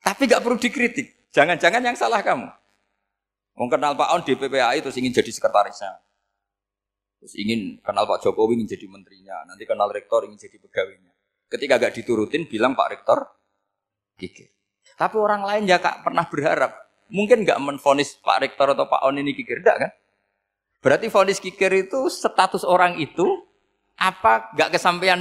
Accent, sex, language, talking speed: native, male, Indonesian, 160 wpm